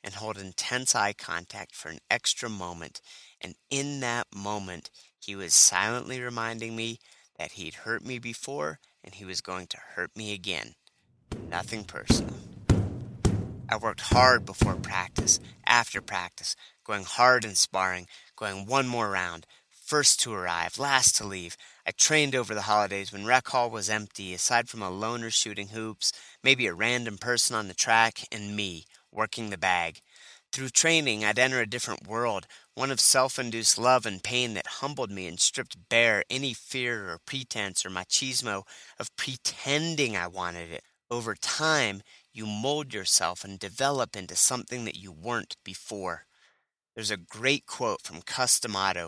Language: English